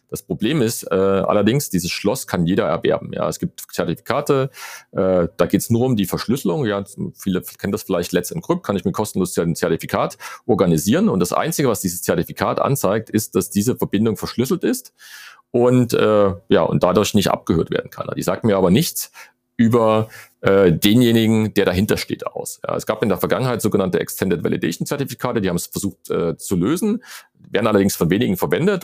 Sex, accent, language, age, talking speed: male, German, German, 40-59, 195 wpm